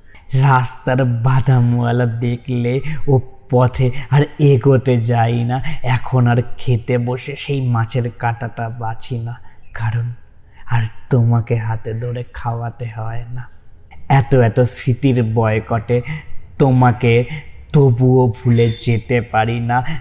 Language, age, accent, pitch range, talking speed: Bengali, 20-39, native, 115-130 Hz, 110 wpm